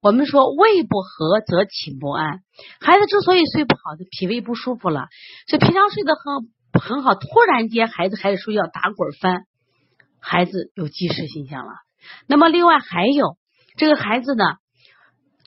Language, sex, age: Chinese, female, 30-49